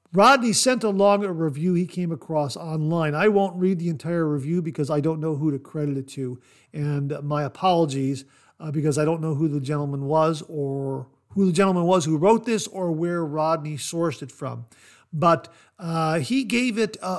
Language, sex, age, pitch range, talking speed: English, male, 50-69, 145-175 Hz, 195 wpm